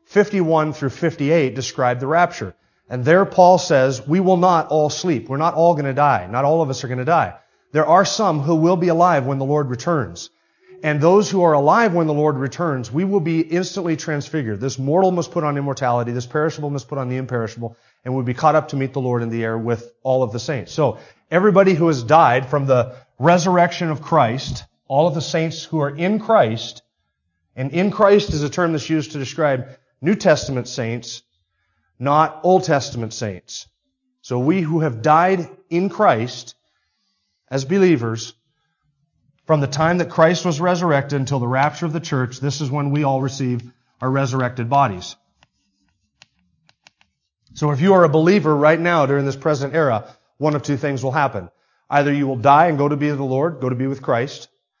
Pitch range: 130-165 Hz